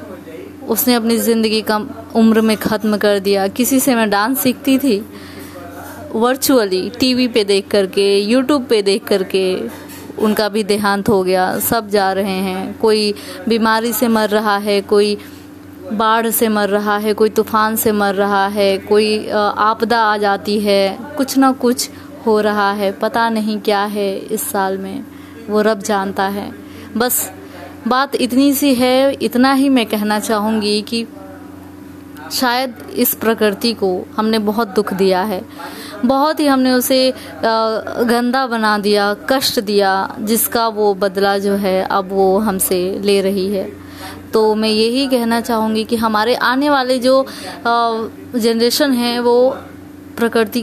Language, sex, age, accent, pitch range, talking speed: Hindi, female, 20-39, native, 205-240 Hz, 150 wpm